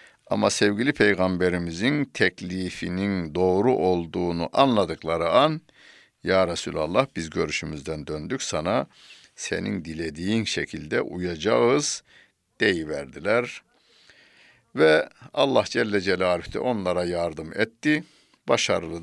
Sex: male